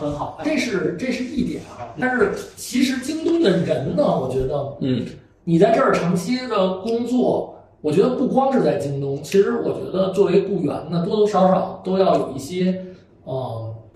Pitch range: 135-195 Hz